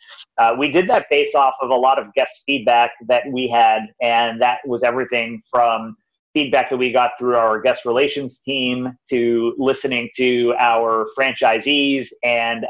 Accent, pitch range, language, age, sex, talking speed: American, 120-135 Hz, English, 30-49, male, 165 wpm